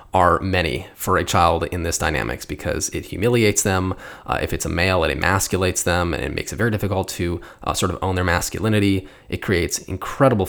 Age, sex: 20-39, male